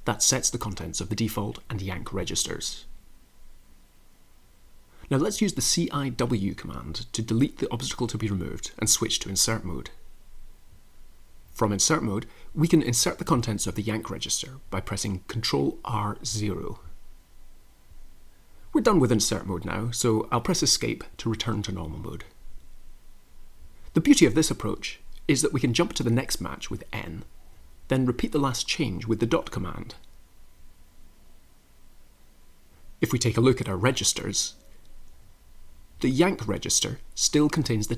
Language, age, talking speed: English, 30-49, 160 wpm